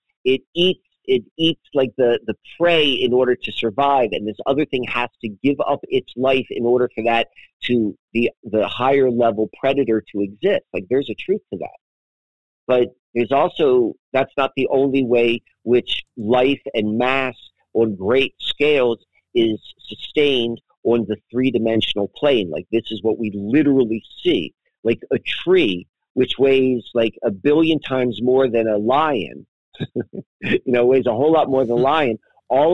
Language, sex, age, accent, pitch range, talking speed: English, male, 50-69, American, 115-150 Hz, 170 wpm